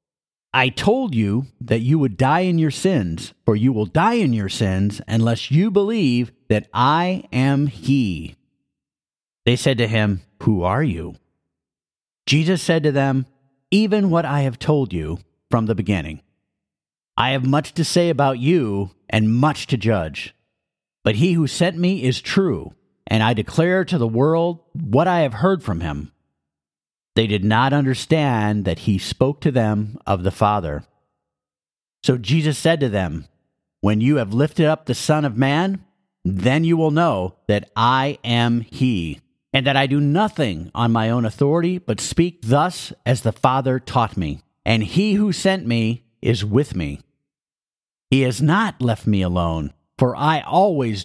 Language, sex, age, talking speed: English, male, 50-69, 165 wpm